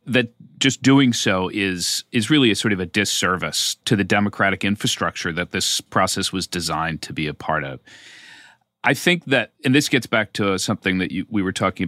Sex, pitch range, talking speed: male, 95-135 Hz, 200 wpm